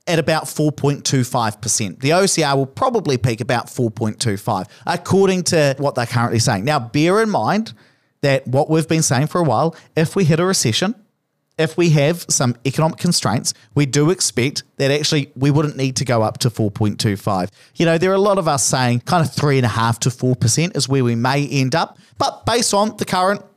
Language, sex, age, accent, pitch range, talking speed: English, male, 40-59, Australian, 125-165 Hz, 210 wpm